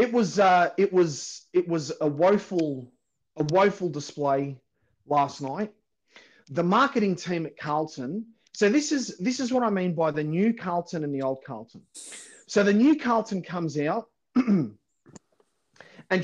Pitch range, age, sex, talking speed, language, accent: 155-225 Hz, 30-49, male, 155 wpm, English, Australian